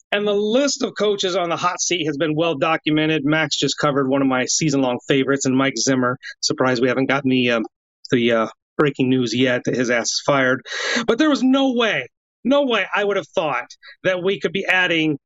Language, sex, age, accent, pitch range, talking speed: English, male, 30-49, American, 145-205 Hz, 215 wpm